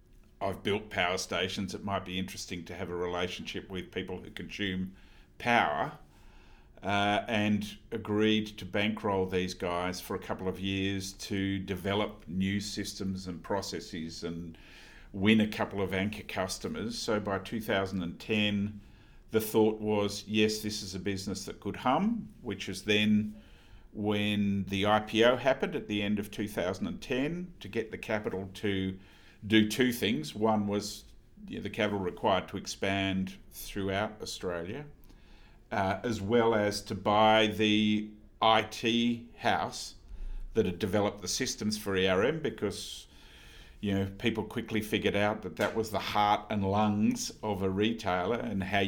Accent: Australian